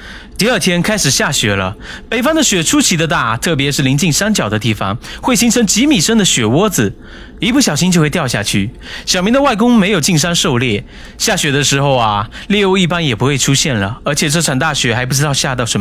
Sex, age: male, 30-49